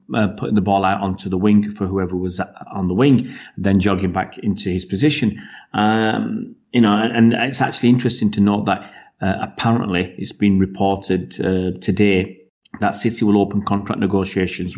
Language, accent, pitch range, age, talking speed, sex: English, British, 95-110 Hz, 40-59, 180 wpm, male